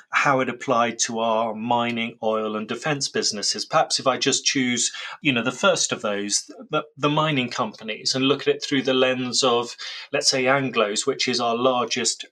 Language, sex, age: English, male, 30-49